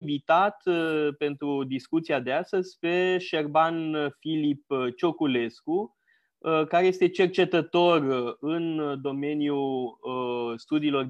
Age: 20-39